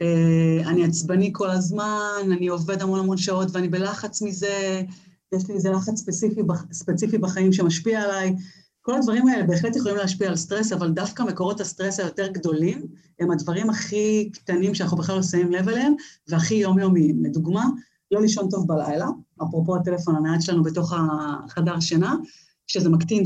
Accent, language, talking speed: native, Hebrew, 155 wpm